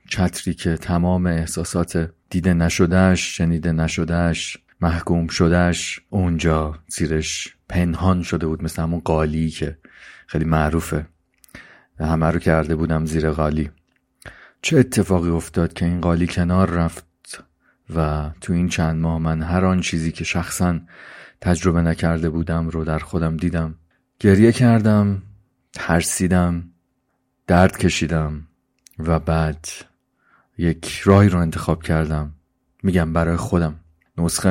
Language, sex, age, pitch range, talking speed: Persian, male, 40-59, 80-90 Hz, 125 wpm